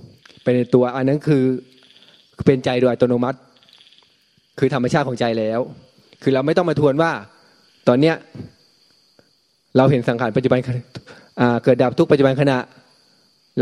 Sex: male